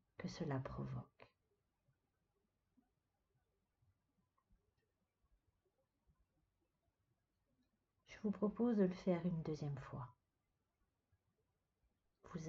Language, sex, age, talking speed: French, female, 50-69, 60 wpm